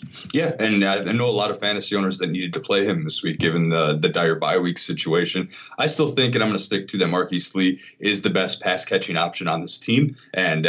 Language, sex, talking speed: English, male, 255 wpm